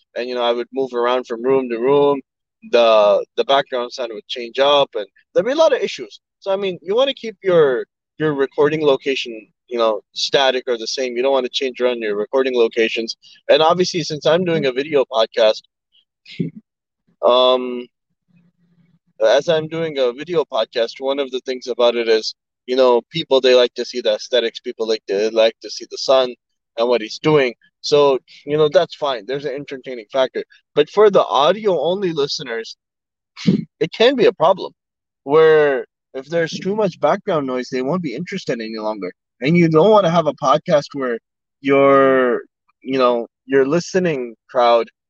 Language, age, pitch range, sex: English, 20-39, 125-165 Hz, male